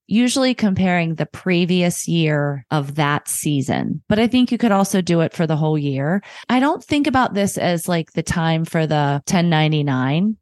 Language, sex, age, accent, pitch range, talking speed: English, female, 30-49, American, 150-190 Hz, 185 wpm